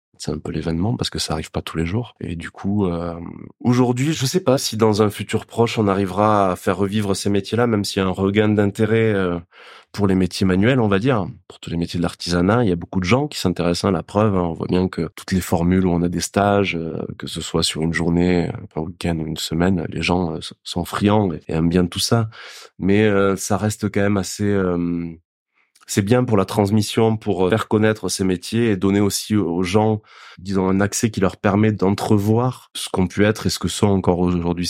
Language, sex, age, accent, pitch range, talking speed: French, male, 30-49, French, 85-105 Hz, 235 wpm